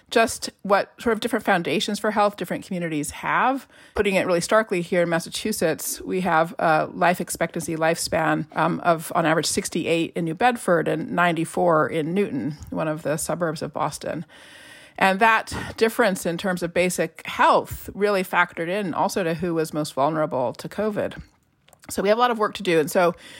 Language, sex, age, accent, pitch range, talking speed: English, female, 30-49, American, 165-210 Hz, 185 wpm